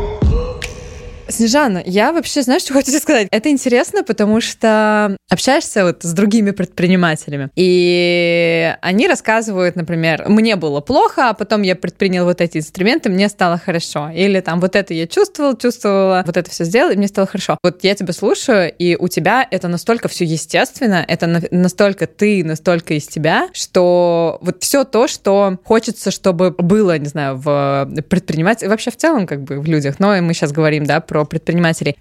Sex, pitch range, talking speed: female, 175-215 Hz, 170 wpm